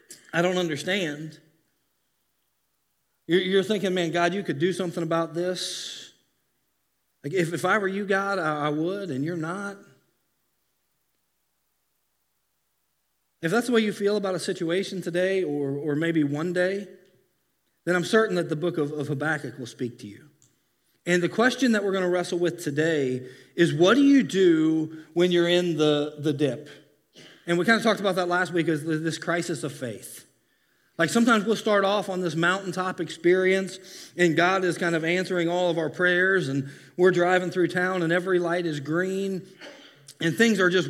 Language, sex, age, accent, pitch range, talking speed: English, male, 40-59, American, 160-190 Hz, 170 wpm